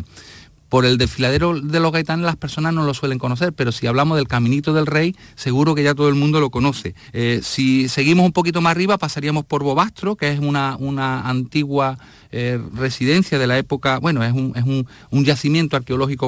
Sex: male